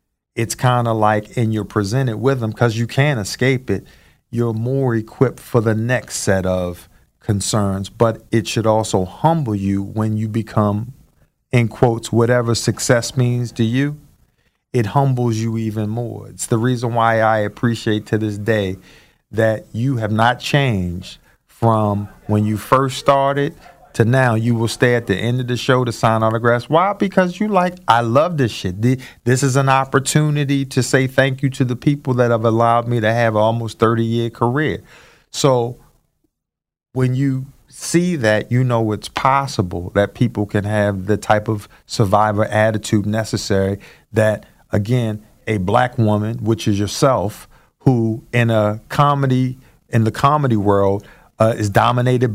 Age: 40-59